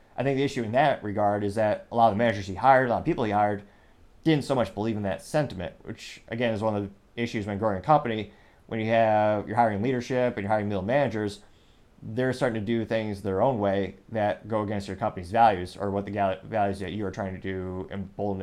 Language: English